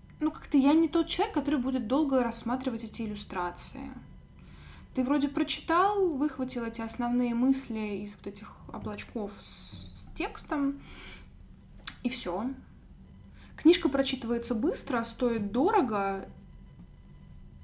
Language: Russian